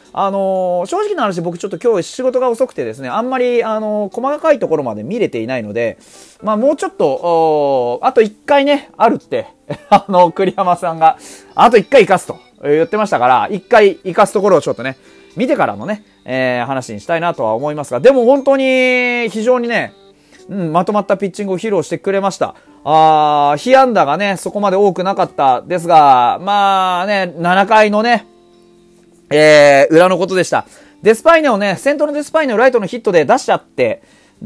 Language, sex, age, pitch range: Japanese, male, 30-49, 150-240 Hz